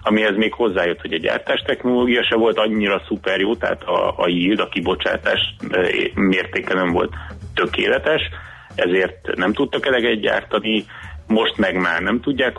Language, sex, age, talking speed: Hungarian, male, 30-49, 150 wpm